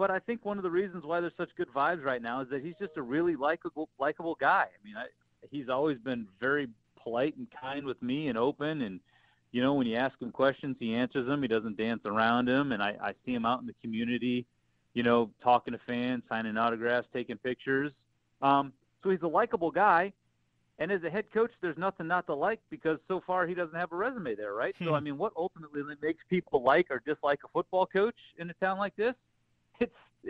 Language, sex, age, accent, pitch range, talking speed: English, male, 40-59, American, 125-175 Hz, 230 wpm